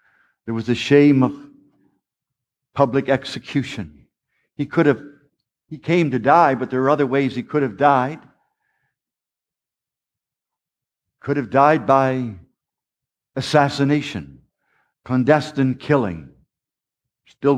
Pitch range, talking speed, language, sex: 130-155 Hz, 105 wpm, English, male